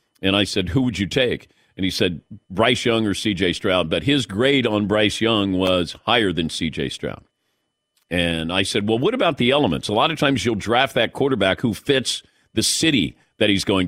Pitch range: 105-135 Hz